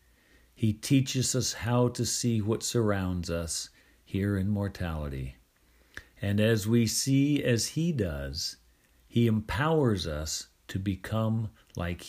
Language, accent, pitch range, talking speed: English, American, 90-120 Hz, 125 wpm